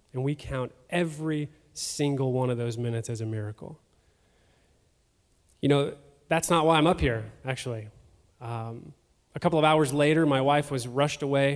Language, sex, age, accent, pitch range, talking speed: English, male, 20-39, American, 125-145 Hz, 165 wpm